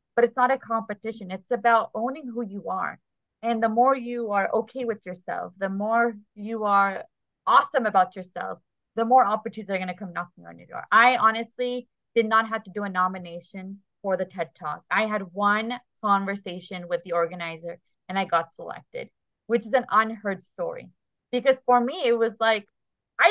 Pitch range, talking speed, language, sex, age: 195-245 Hz, 190 wpm, English, female, 20-39